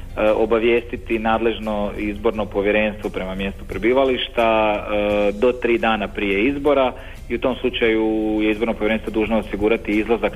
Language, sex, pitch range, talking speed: Croatian, male, 100-115 Hz, 125 wpm